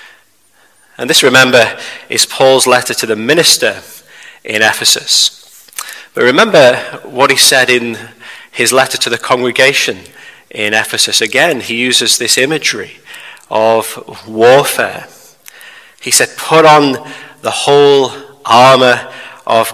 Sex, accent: male, British